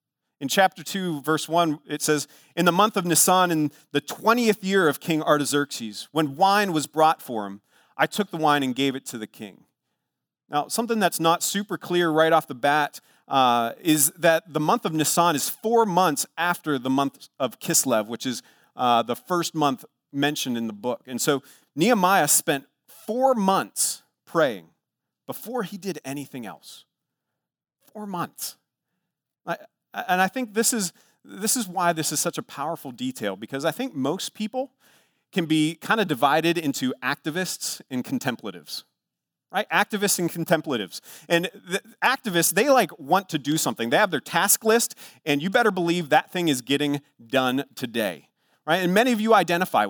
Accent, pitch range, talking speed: American, 145-195 Hz, 175 wpm